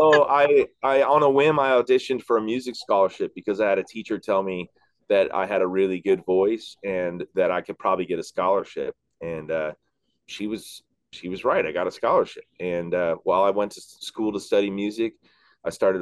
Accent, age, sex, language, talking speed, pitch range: American, 30-49, male, English, 210 wpm, 105-140 Hz